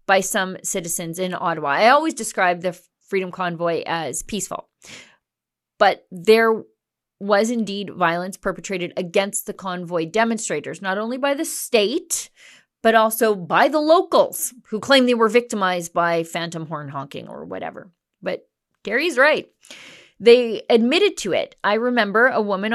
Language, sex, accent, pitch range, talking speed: English, female, American, 180-235 Hz, 145 wpm